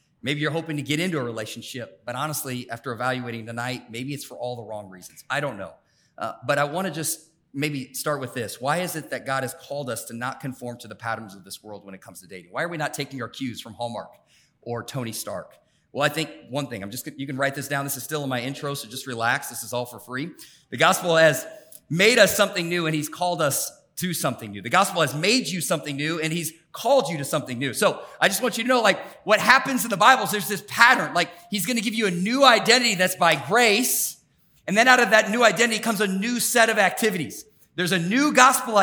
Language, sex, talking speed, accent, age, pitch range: English, male, 260 wpm, American, 40-59, 145-220 Hz